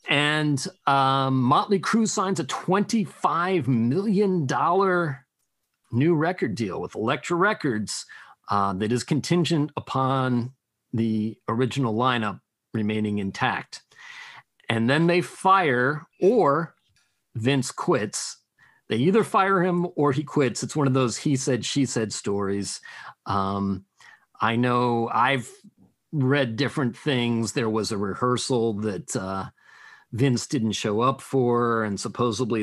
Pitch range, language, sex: 115-155 Hz, English, male